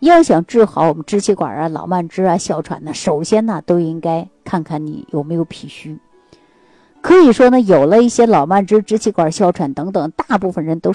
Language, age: Chinese, 50-69